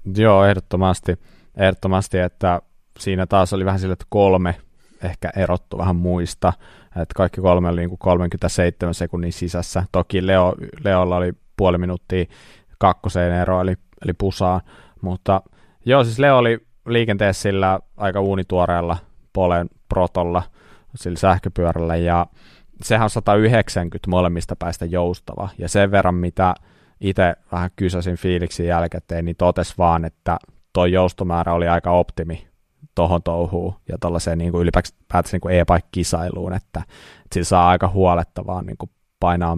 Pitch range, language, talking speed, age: 85-95 Hz, Finnish, 135 wpm, 30-49